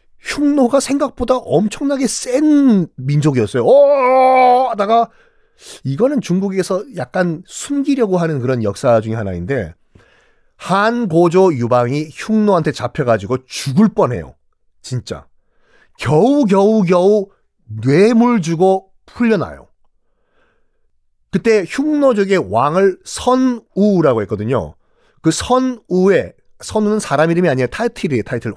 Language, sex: Korean, male